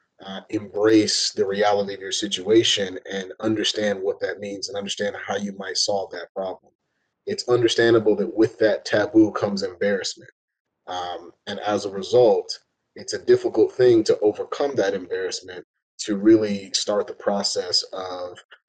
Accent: American